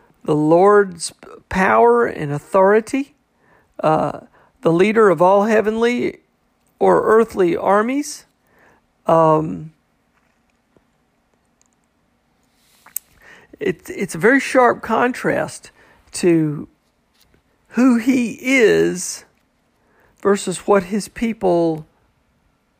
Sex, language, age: male, English, 50-69